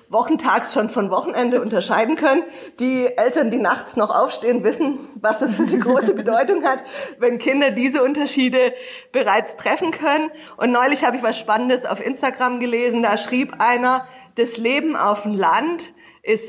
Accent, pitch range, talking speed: German, 225-265 Hz, 165 wpm